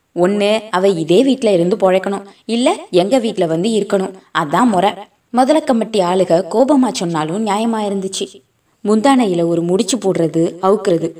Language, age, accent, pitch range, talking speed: Tamil, 20-39, native, 180-230 Hz, 135 wpm